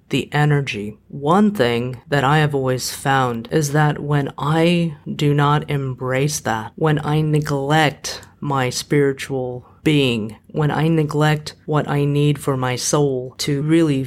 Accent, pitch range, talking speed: American, 135-160 Hz, 145 wpm